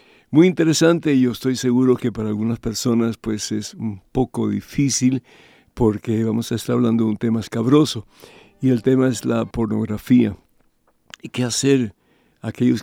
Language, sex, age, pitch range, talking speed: Spanish, male, 60-79, 115-130 Hz, 160 wpm